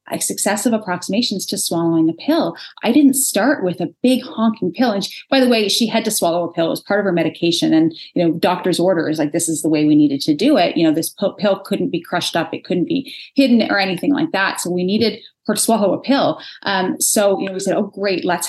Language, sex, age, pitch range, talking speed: English, female, 30-49, 175-230 Hz, 260 wpm